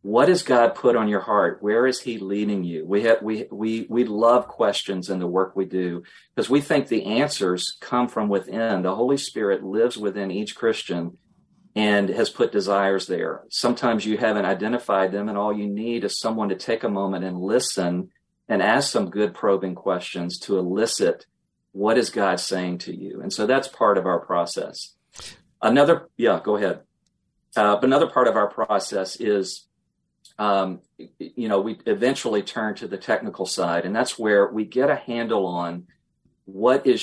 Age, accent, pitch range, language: 40-59, American, 95-110 Hz, English